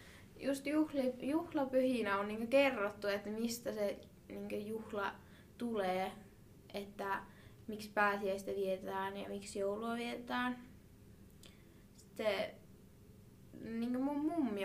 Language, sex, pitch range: Finnish, female, 195-235 Hz